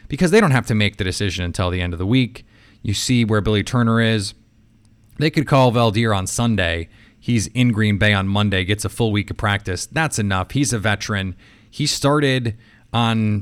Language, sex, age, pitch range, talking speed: English, male, 30-49, 105-130 Hz, 205 wpm